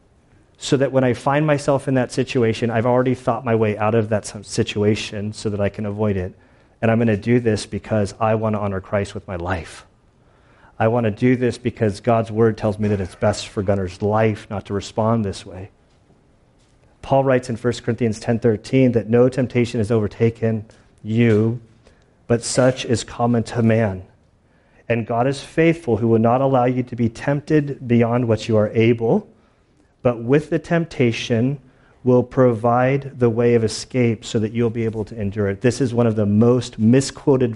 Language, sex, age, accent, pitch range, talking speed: English, male, 40-59, American, 110-135 Hz, 190 wpm